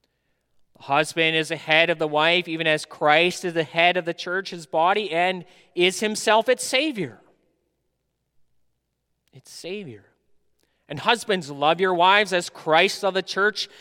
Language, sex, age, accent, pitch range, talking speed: English, male, 30-49, American, 165-220 Hz, 155 wpm